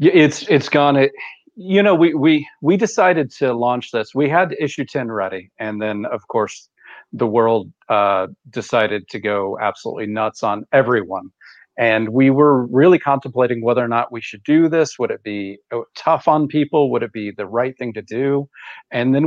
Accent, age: American, 40-59